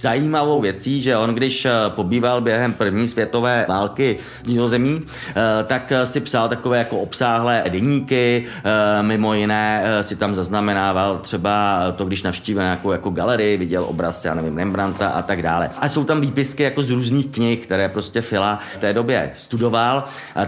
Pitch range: 105-125 Hz